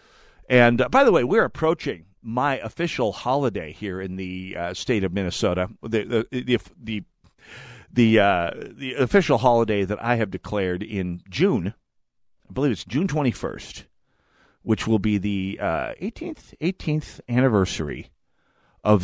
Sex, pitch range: male, 95-120 Hz